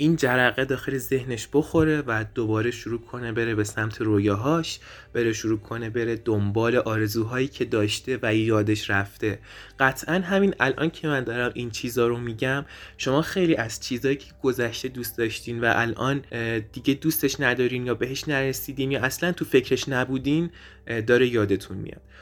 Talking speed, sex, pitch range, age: 155 wpm, male, 110-145 Hz, 20-39